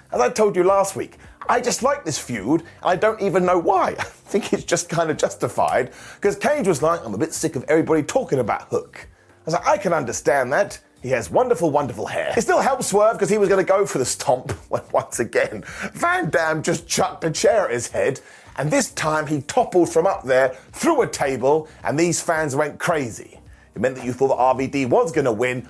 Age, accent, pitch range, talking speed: 30-49, British, 140-215 Hz, 235 wpm